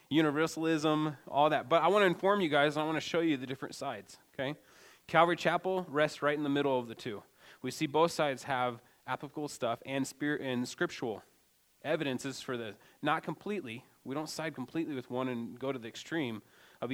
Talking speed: 205 wpm